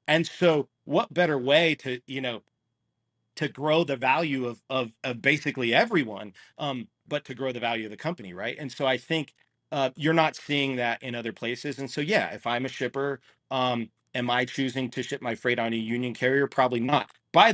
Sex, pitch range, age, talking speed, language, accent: male, 115-145 Hz, 40-59, 210 wpm, English, American